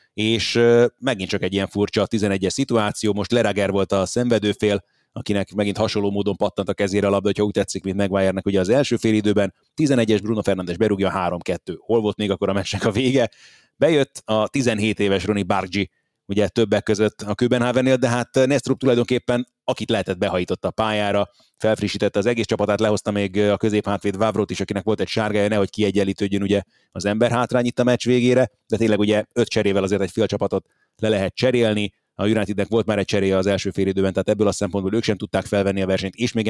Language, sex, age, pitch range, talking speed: Hungarian, male, 30-49, 100-110 Hz, 200 wpm